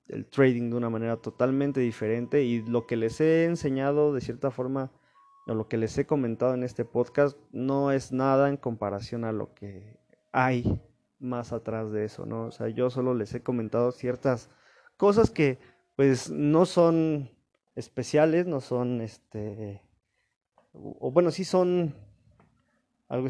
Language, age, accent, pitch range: Spanish, 20-39, Mexican, 115-145 Hz